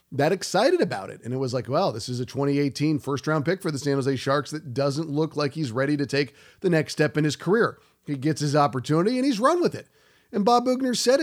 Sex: male